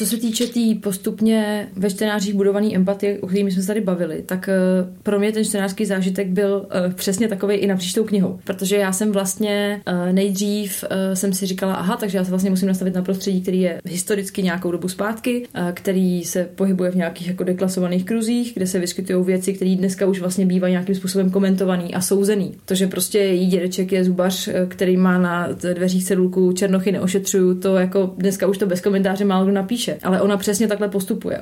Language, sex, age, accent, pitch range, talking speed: Czech, female, 20-39, native, 185-205 Hz, 195 wpm